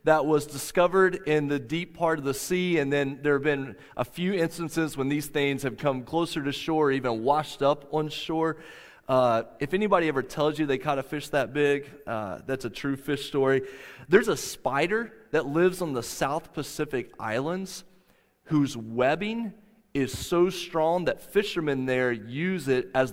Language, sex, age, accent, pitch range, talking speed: English, male, 30-49, American, 130-175 Hz, 180 wpm